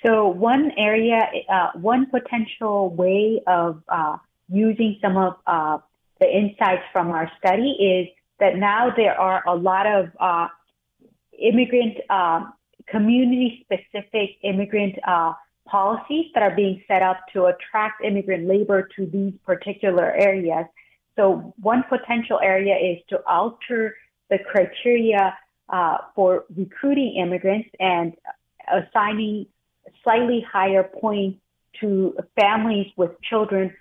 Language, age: English, 30-49